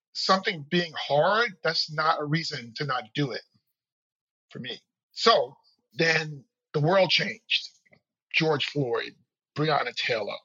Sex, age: male, 40-59